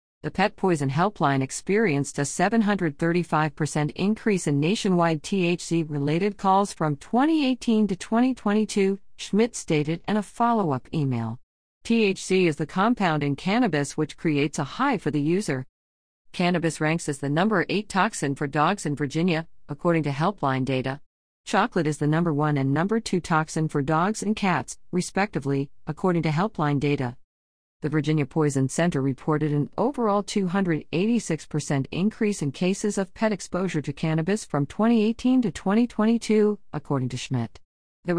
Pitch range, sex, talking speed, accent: 145-200 Hz, female, 145 wpm, American